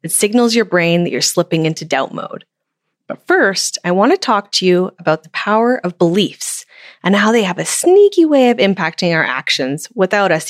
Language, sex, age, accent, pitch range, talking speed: English, female, 20-39, American, 170-205 Hz, 205 wpm